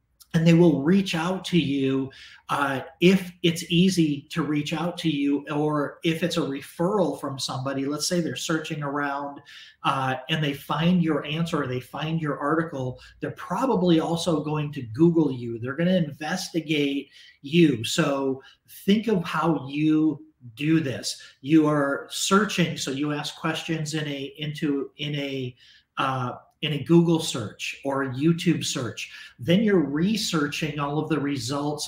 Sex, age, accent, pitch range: male, 40-59, American, 140-165 Hz